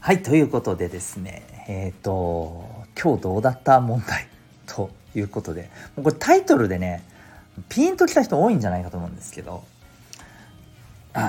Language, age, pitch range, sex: Japanese, 40-59, 95-130 Hz, male